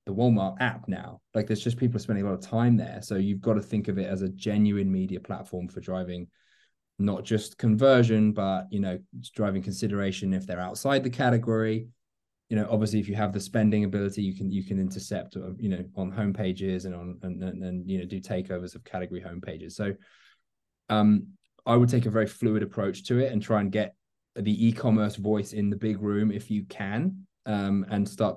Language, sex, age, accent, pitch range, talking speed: English, male, 20-39, British, 95-110 Hz, 215 wpm